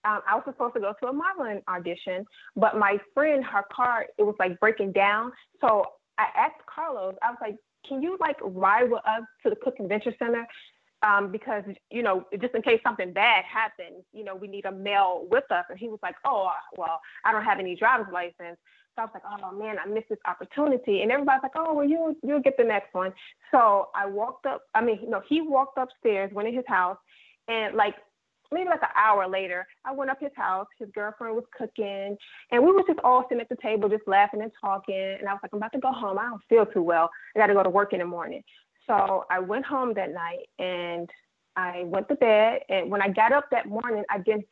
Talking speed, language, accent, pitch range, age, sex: 235 wpm, English, American, 195-250 Hz, 30-49, female